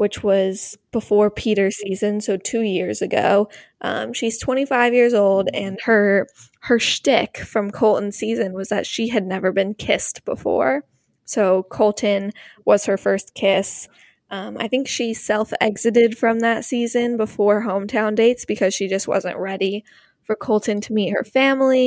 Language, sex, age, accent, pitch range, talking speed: English, female, 10-29, American, 200-230 Hz, 155 wpm